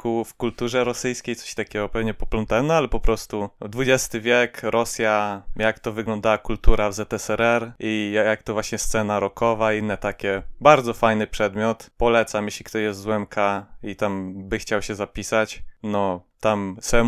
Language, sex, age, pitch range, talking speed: Polish, male, 20-39, 105-120 Hz, 170 wpm